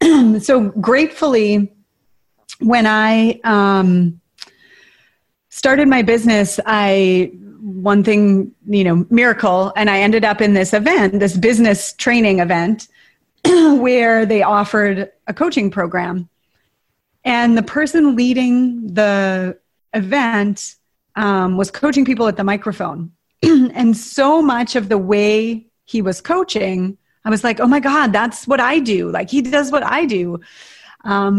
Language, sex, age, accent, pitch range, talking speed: English, female, 30-49, American, 195-245 Hz, 135 wpm